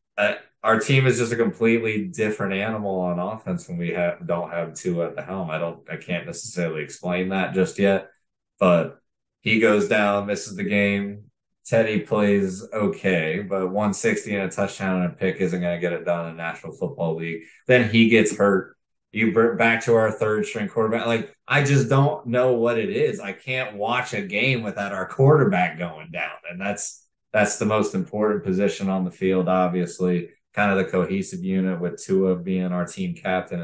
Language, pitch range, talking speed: English, 90-115 Hz, 195 wpm